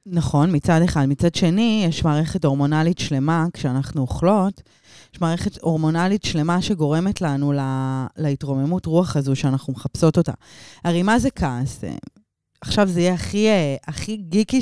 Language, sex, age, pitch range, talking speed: Hebrew, female, 20-39, 140-180 Hz, 140 wpm